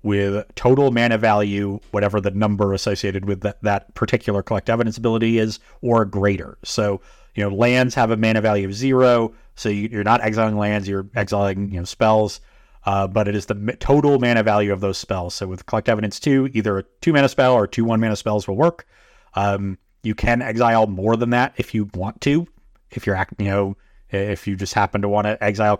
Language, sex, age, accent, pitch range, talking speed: English, male, 30-49, American, 100-120 Hz, 210 wpm